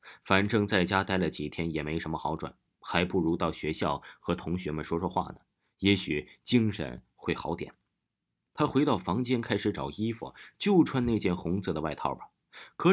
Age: 30-49